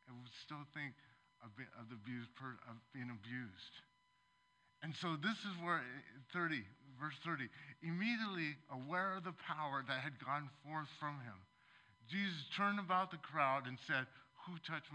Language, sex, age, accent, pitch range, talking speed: English, male, 50-69, American, 125-175 Hz, 140 wpm